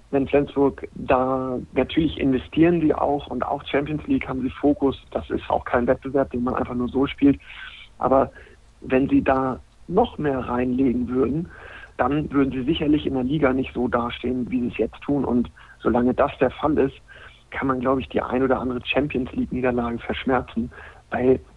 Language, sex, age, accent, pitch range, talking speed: German, male, 50-69, German, 120-135 Hz, 185 wpm